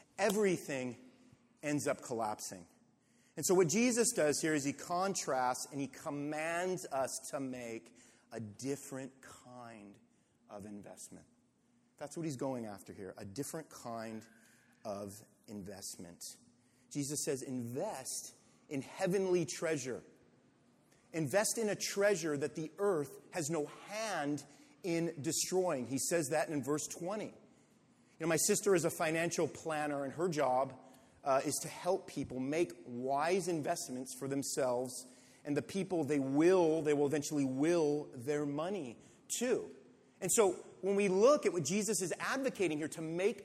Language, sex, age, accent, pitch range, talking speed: English, male, 30-49, American, 135-195 Hz, 145 wpm